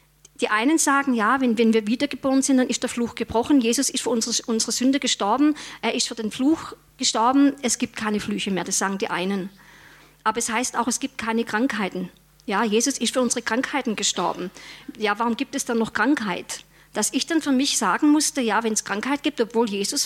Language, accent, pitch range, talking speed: German, German, 210-265 Hz, 215 wpm